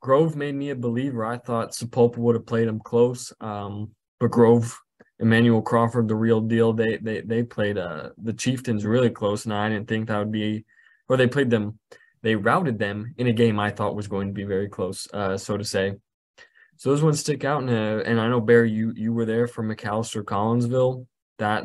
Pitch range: 110-125 Hz